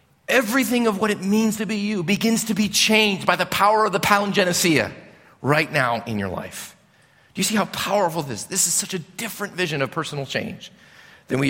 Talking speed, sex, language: 210 wpm, male, English